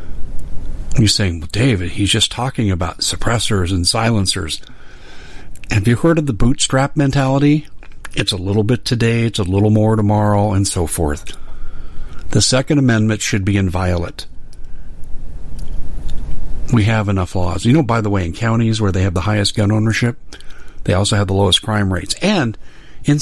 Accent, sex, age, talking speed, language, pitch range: American, male, 50-69, 165 wpm, English, 100-145 Hz